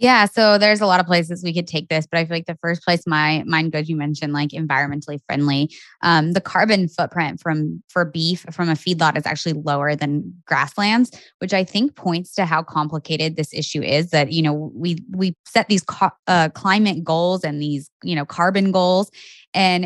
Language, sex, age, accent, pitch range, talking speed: English, female, 20-39, American, 160-185 Hz, 210 wpm